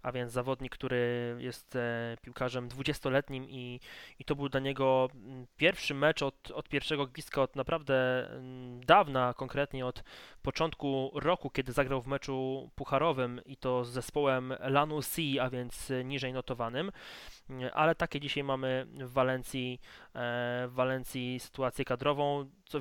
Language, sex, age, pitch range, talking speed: Polish, male, 20-39, 130-145 Hz, 140 wpm